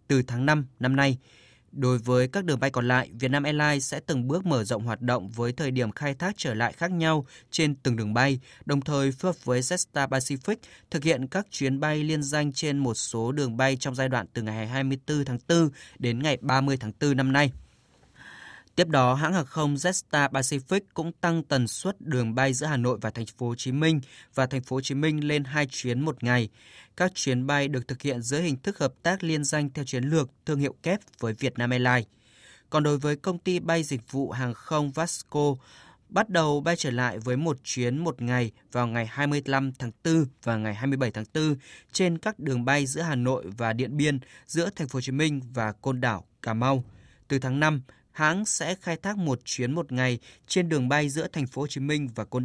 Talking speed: 225 wpm